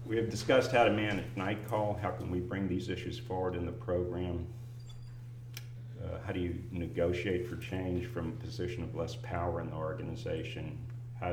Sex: male